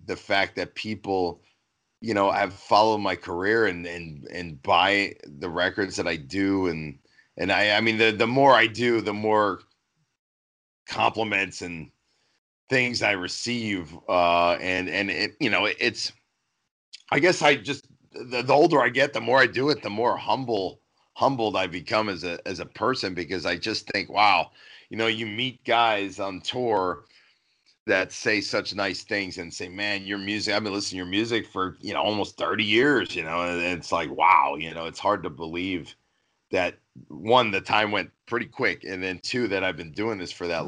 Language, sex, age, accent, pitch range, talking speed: English, male, 40-59, American, 85-105 Hz, 195 wpm